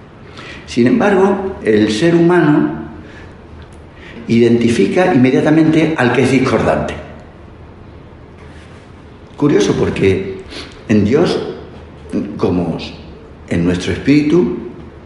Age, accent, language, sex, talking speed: 60-79, Spanish, Spanish, male, 75 wpm